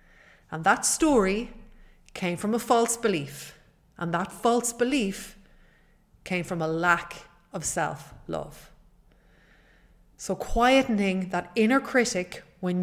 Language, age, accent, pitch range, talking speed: English, 30-49, Irish, 165-200 Hz, 110 wpm